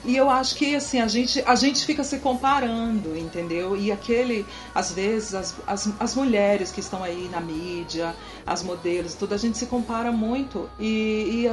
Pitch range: 175-230 Hz